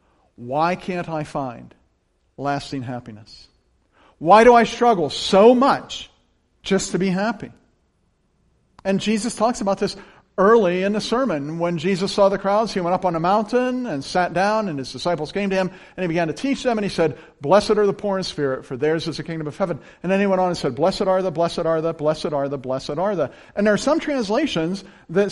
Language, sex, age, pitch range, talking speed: English, male, 50-69, 155-215 Hz, 220 wpm